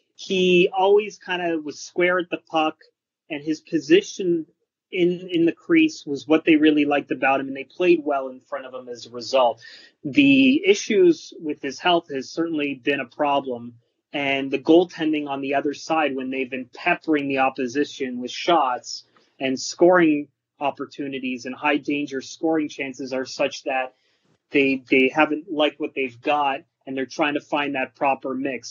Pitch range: 135-170 Hz